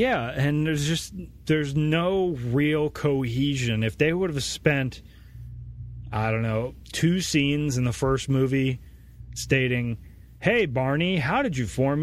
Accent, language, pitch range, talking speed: American, English, 110-150 Hz, 145 wpm